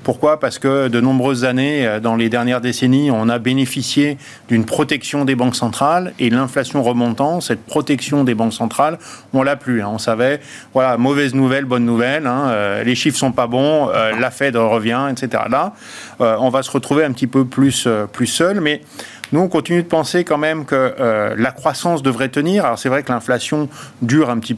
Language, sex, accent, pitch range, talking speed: French, male, French, 120-150 Hz, 200 wpm